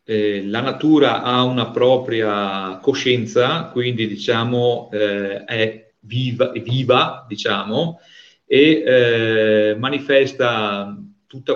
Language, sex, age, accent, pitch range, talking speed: Italian, male, 40-59, native, 105-135 Hz, 100 wpm